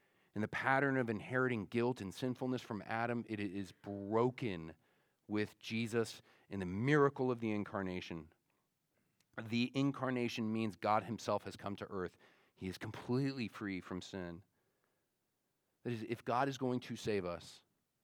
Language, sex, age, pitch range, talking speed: English, male, 40-59, 100-120 Hz, 150 wpm